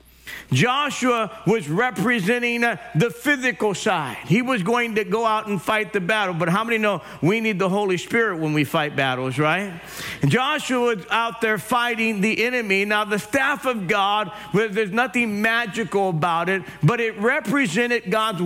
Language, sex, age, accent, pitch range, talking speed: English, male, 50-69, American, 195-235 Hz, 165 wpm